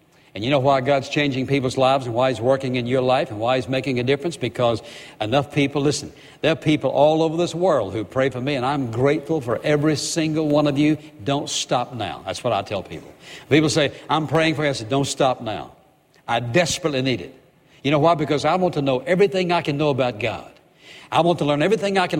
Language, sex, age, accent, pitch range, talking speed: English, male, 60-79, American, 135-165 Hz, 240 wpm